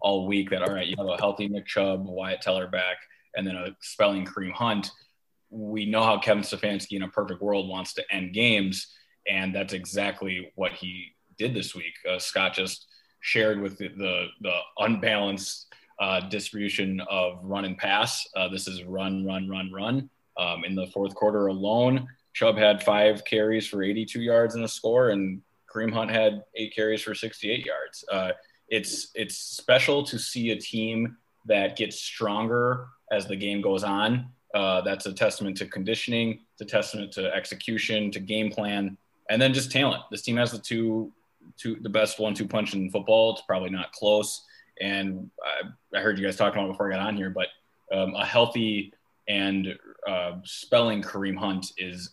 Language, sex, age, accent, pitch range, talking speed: English, male, 20-39, American, 95-110 Hz, 185 wpm